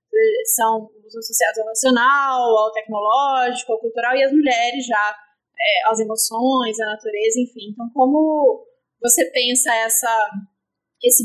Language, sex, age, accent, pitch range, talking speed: Portuguese, female, 20-39, Brazilian, 225-295 Hz, 135 wpm